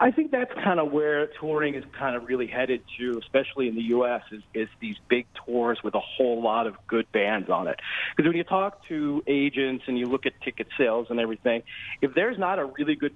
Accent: American